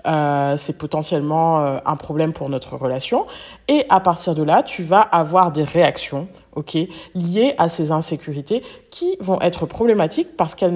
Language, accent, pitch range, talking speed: French, French, 155-200 Hz, 165 wpm